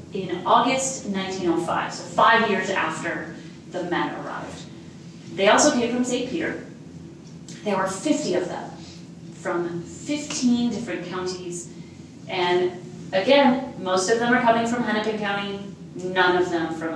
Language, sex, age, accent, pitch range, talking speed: English, female, 30-49, American, 180-225 Hz, 140 wpm